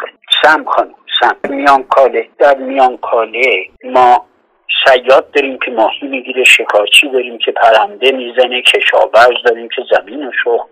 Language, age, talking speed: Persian, 60-79, 140 wpm